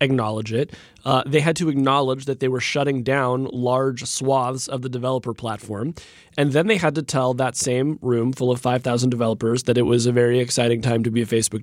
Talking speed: 220 wpm